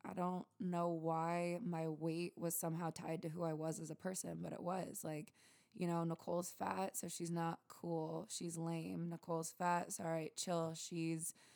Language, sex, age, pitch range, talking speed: English, female, 20-39, 160-180 Hz, 190 wpm